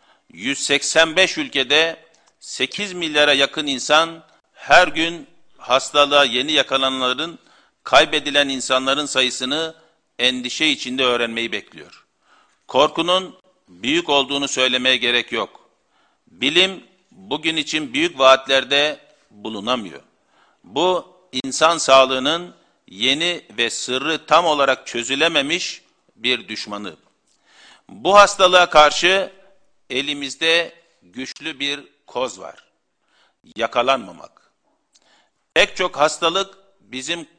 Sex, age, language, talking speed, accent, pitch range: male, 50-69, Turkish, 85 wpm, native, 130-175 Hz